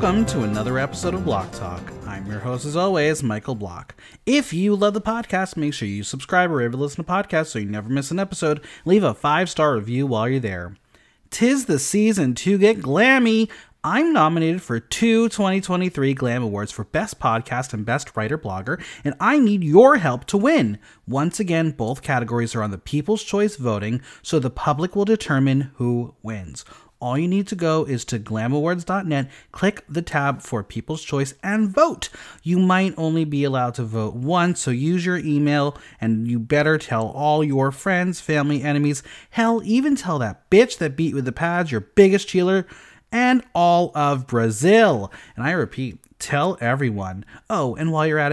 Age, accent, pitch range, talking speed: 30-49, American, 115-180 Hz, 185 wpm